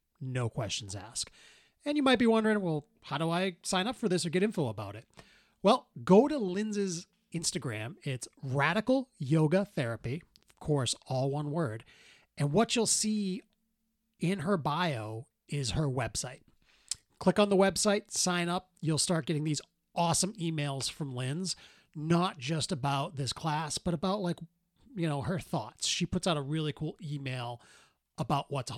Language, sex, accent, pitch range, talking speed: English, male, American, 135-190 Hz, 165 wpm